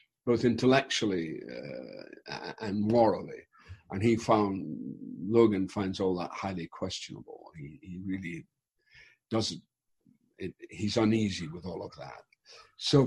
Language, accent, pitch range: English, British, 100-125 Hz